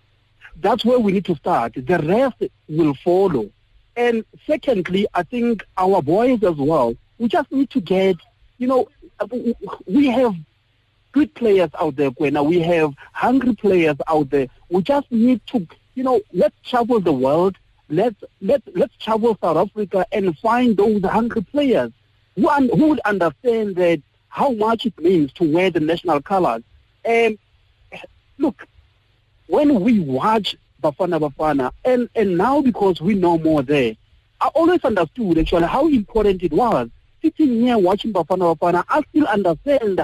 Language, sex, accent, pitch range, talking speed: English, male, South African, 160-255 Hz, 155 wpm